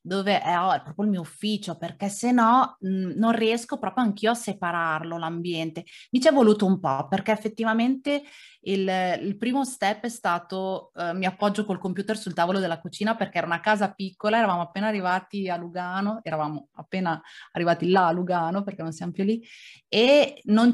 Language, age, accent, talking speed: Italian, 30-49, native, 190 wpm